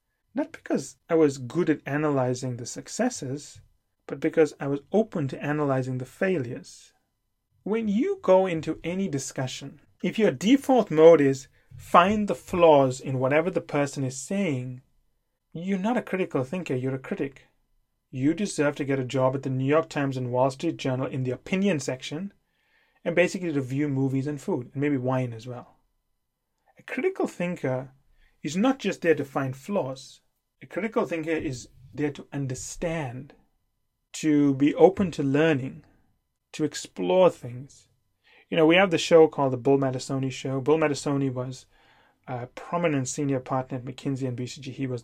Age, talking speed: 30-49, 165 wpm